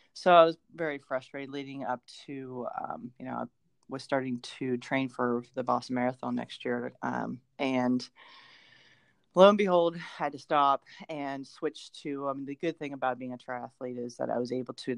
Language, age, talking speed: English, 30-49, 195 wpm